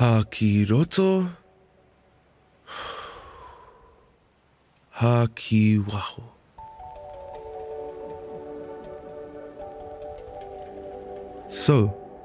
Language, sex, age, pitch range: English, male, 20-39, 110-150 Hz